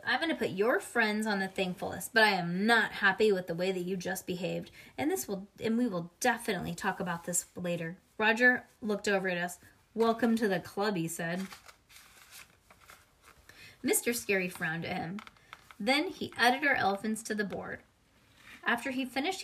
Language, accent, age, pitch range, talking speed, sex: English, American, 20-39, 190-270 Hz, 180 wpm, female